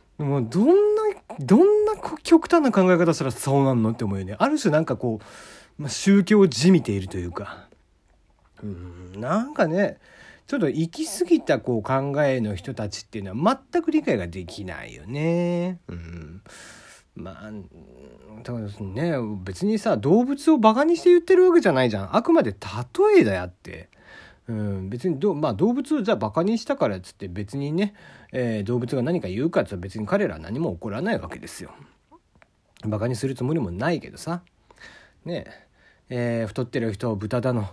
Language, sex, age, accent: Japanese, male, 40-59, native